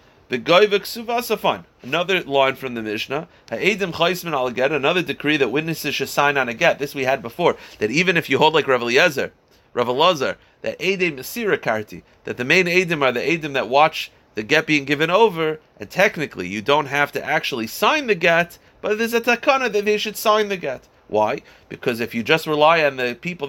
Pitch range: 135-190 Hz